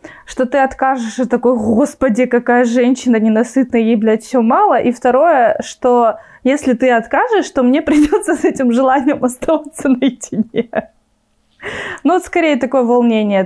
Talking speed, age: 140 wpm, 20-39